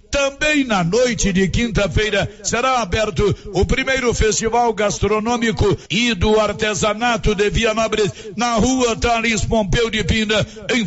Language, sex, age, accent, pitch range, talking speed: Portuguese, male, 60-79, Brazilian, 205-230 Hz, 125 wpm